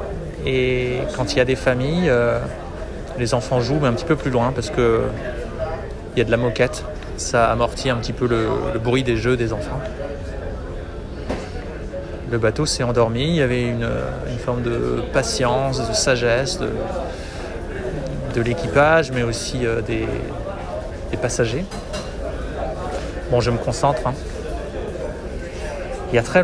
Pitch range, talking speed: 115-130 Hz, 155 wpm